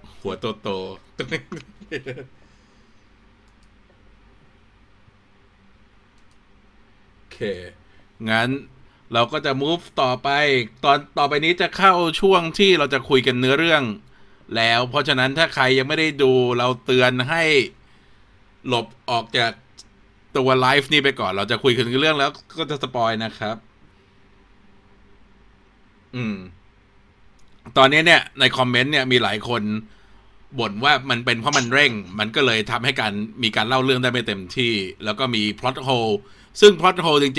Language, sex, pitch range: Thai, male, 100-140 Hz